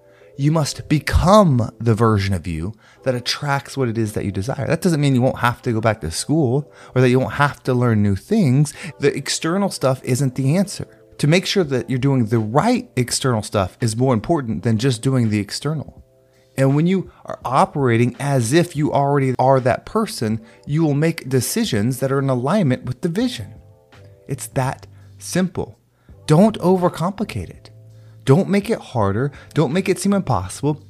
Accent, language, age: American, English, 30-49